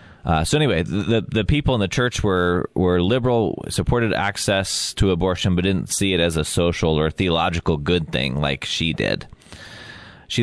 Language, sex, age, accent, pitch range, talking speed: English, male, 20-39, American, 90-110 Hz, 180 wpm